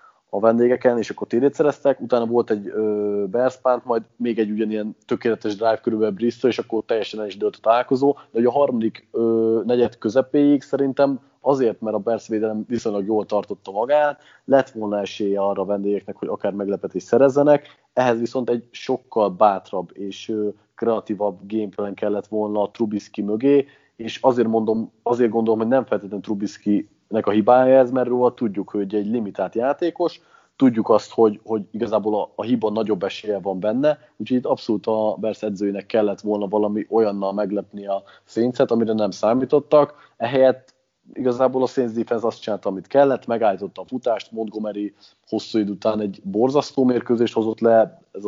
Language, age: Hungarian, 30-49